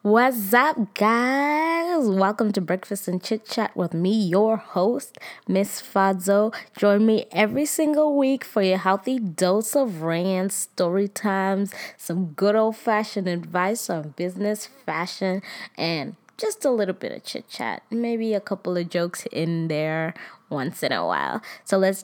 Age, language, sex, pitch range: 20-39, English, female, 180-230 Hz